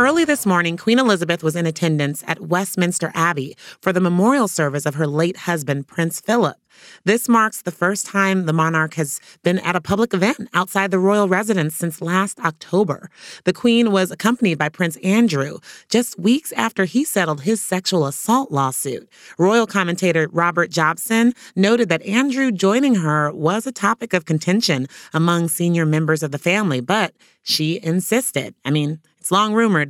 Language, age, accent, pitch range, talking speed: English, 30-49, American, 155-200 Hz, 170 wpm